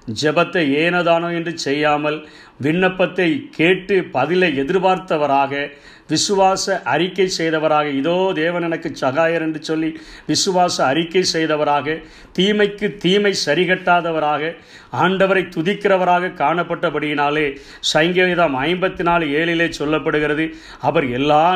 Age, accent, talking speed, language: 50-69, native, 90 wpm, Tamil